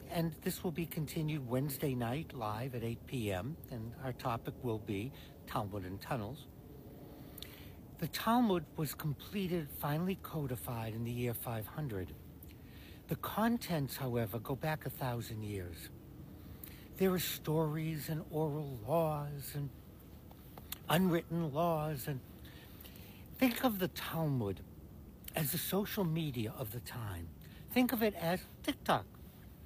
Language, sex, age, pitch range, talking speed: English, male, 60-79, 100-165 Hz, 125 wpm